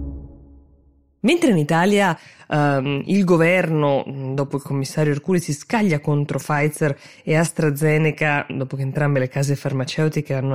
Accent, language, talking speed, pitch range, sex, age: native, Italian, 130 wpm, 140-170 Hz, female, 20-39